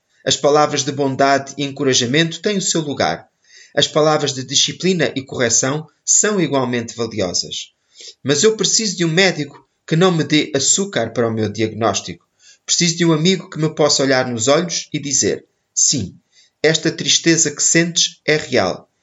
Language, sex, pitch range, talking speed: Portuguese, male, 135-170 Hz, 165 wpm